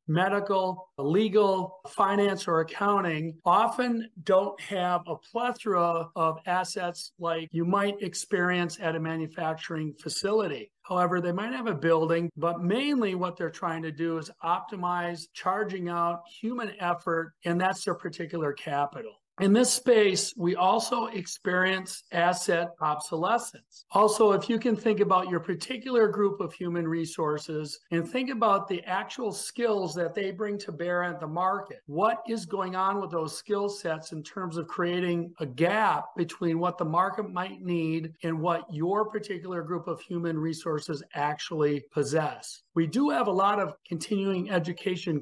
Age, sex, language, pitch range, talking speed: 40-59, male, English, 165-200 Hz, 155 wpm